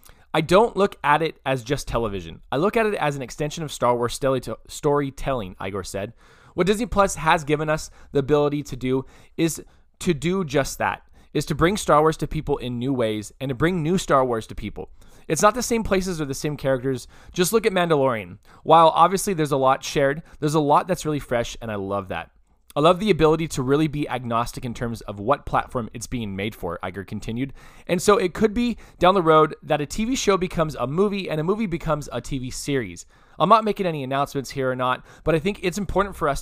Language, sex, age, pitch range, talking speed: English, male, 20-39, 120-160 Hz, 230 wpm